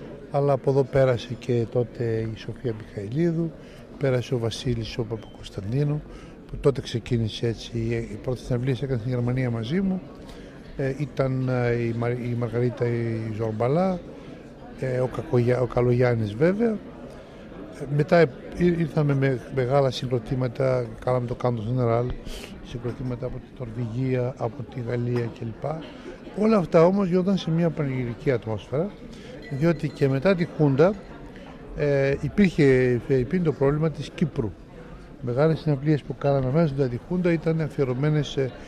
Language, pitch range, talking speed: Greek, 120-150 Hz, 110 wpm